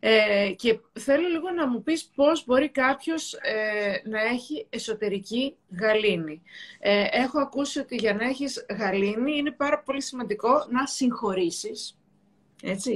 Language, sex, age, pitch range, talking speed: Greek, female, 30-49, 205-275 Hz, 120 wpm